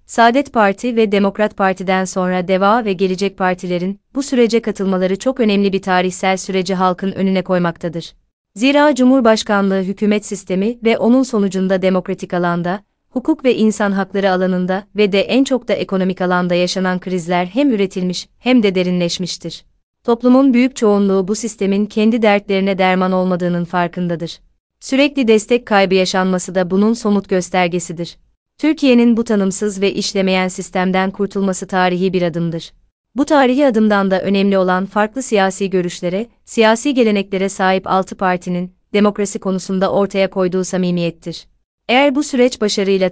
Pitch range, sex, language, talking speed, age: 185-220 Hz, female, Turkish, 140 wpm, 30-49